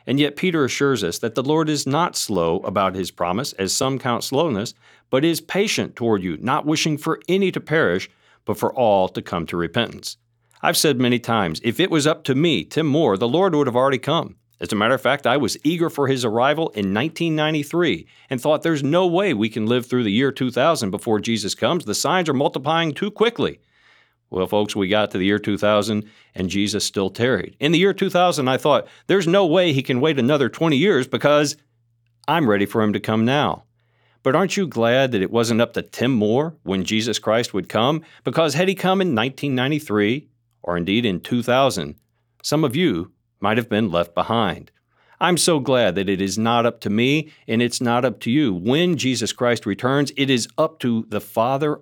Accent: American